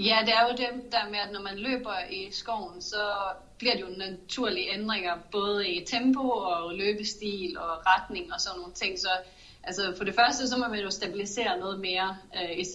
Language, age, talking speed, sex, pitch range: Danish, 30-49, 200 wpm, female, 180-210 Hz